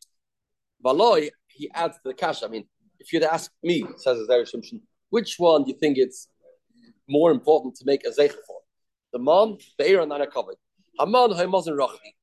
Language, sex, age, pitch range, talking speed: English, male, 30-49, 155-245 Hz, 165 wpm